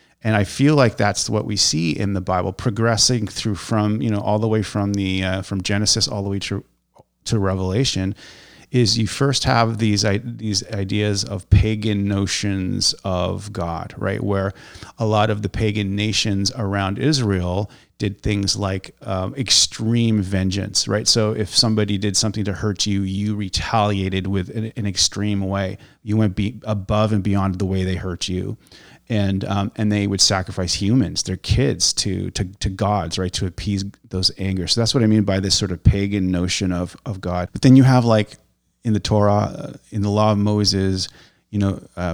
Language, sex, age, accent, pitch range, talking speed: English, male, 30-49, American, 95-110 Hz, 190 wpm